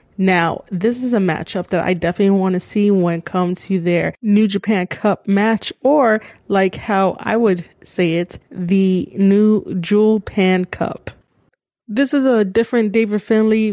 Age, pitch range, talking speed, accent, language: 20-39, 180-220 Hz, 165 wpm, American, English